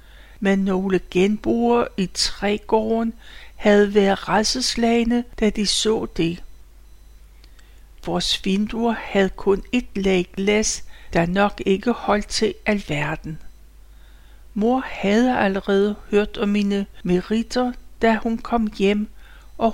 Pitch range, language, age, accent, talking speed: 180-235 Hz, Danish, 60-79, native, 110 wpm